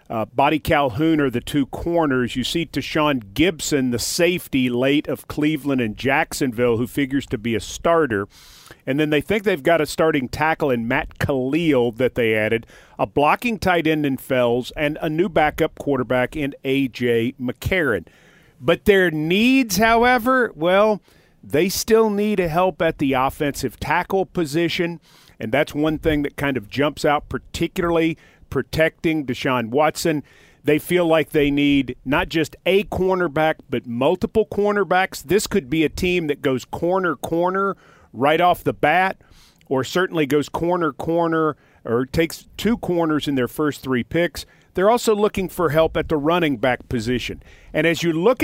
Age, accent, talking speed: 40-59, American, 165 wpm